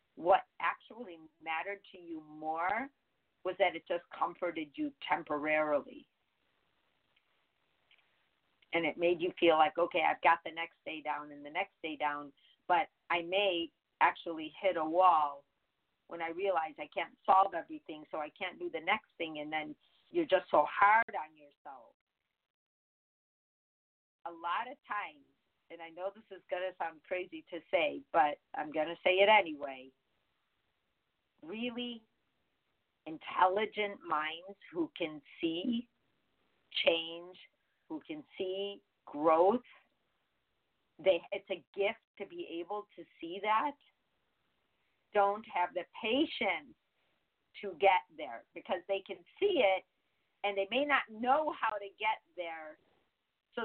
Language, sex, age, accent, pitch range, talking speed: English, female, 50-69, American, 165-215 Hz, 140 wpm